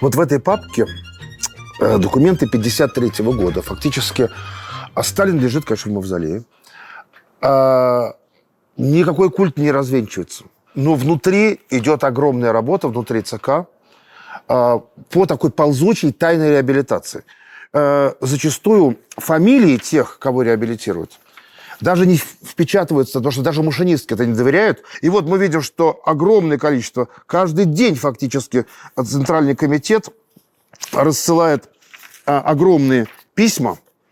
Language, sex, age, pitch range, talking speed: Russian, male, 40-59, 125-170 Hz, 105 wpm